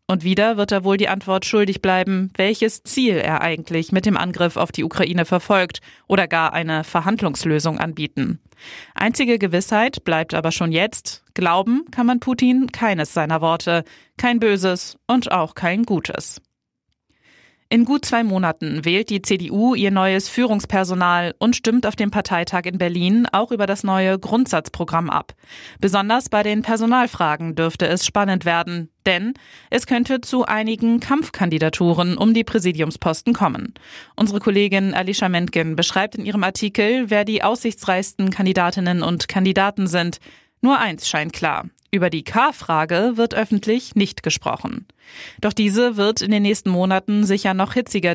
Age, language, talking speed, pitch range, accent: 20-39, German, 150 wpm, 175-220 Hz, German